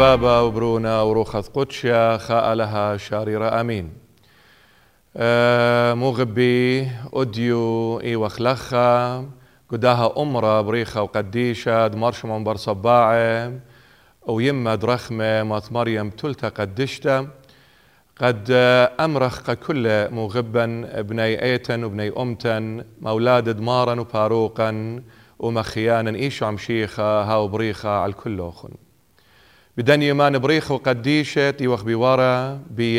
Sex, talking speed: male, 100 wpm